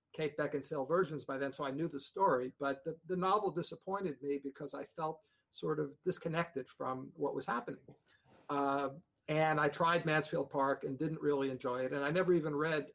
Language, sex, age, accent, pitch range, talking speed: English, male, 50-69, American, 135-155 Hz, 195 wpm